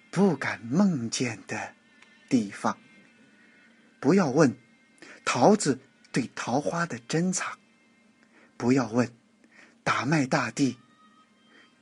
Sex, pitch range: male, 150-240 Hz